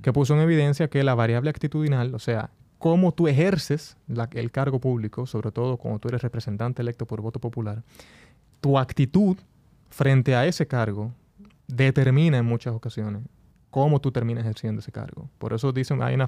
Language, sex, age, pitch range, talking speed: Spanish, male, 20-39, 115-140 Hz, 175 wpm